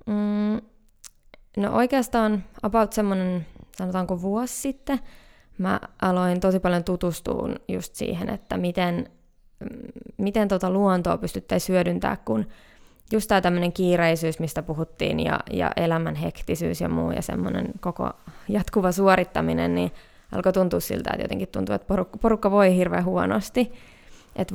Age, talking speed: 20-39, 125 wpm